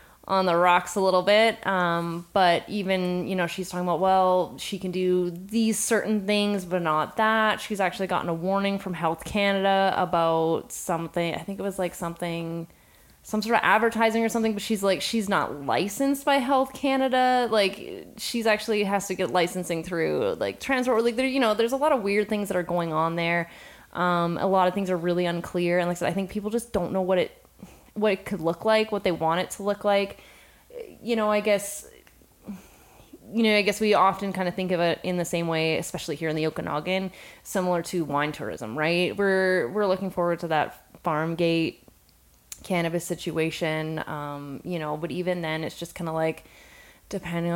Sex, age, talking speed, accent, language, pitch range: female, 20-39, 205 wpm, American, English, 170-205 Hz